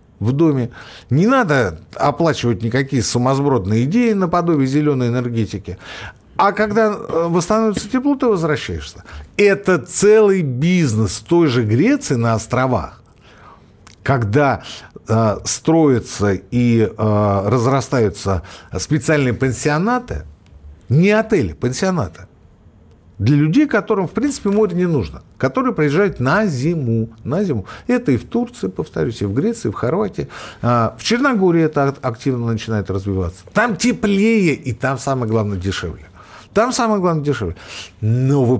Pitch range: 110-180 Hz